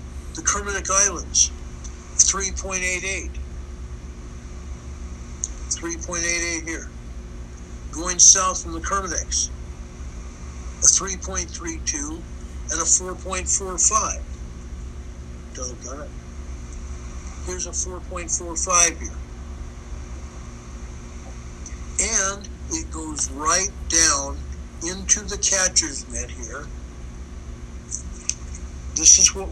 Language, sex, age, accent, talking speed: English, male, 60-79, American, 70 wpm